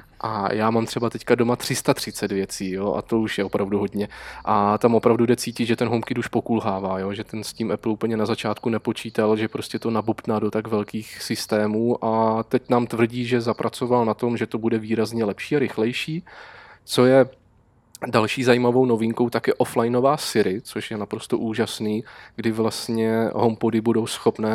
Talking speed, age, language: 185 wpm, 20-39, Czech